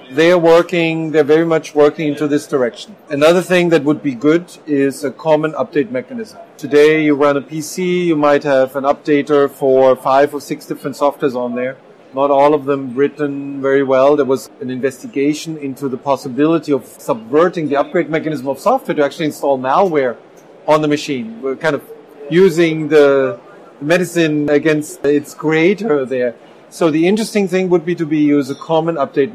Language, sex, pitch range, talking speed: English, male, 140-165 Hz, 180 wpm